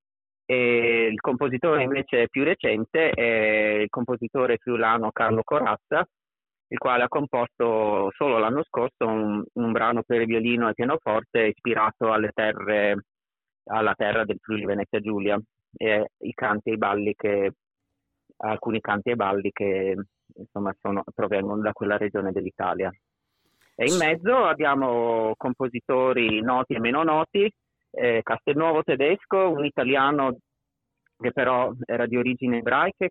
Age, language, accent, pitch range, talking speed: 30-49, Italian, native, 110-130 Hz, 135 wpm